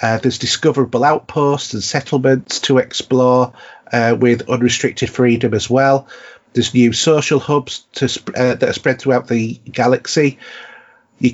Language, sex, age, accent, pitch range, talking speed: English, male, 30-49, British, 120-135 Hz, 140 wpm